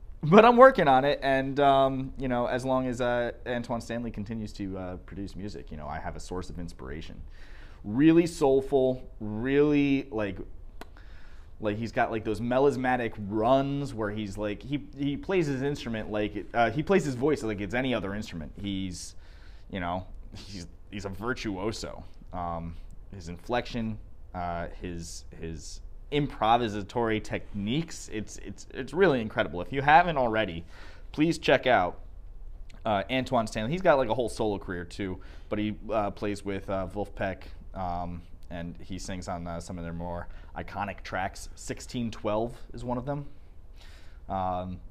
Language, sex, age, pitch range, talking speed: English, male, 20-39, 85-120 Hz, 165 wpm